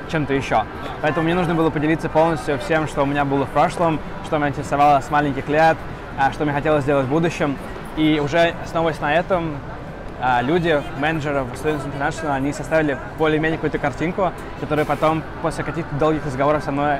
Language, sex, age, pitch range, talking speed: Russian, male, 20-39, 135-155 Hz, 175 wpm